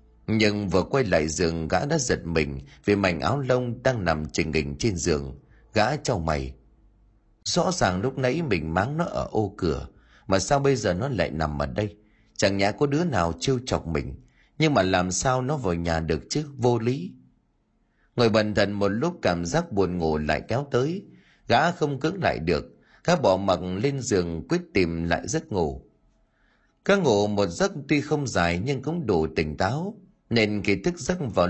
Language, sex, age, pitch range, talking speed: Vietnamese, male, 30-49, 85-135 Hz, 200 wpm